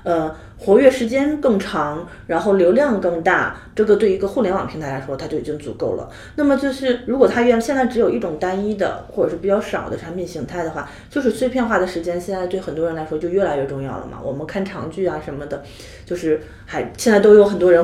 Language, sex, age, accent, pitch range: Chinese, female, 30-49, native, 165-230 Hz